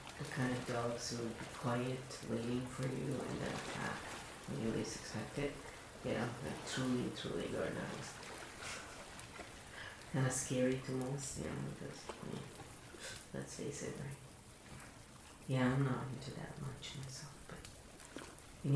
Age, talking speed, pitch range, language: 40-59, 155 wpm, 120-140 Hz, English